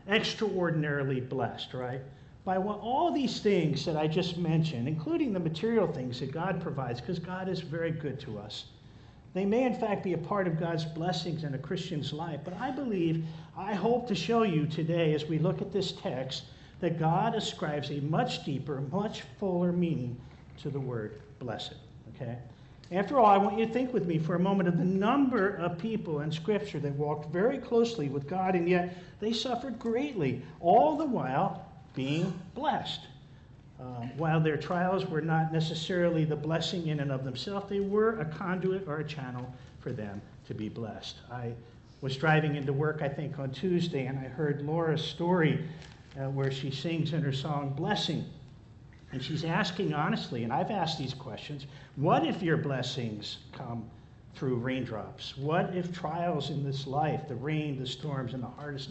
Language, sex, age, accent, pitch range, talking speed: English, male, 50-69, American, 135-180 Hz, 180 wpm